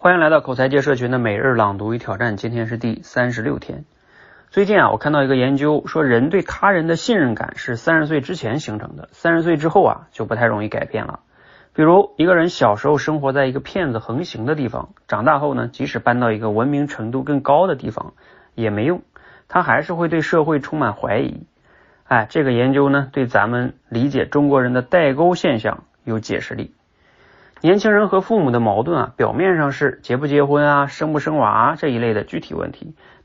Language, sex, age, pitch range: Chinese, male, 30-49, 120-155 Hz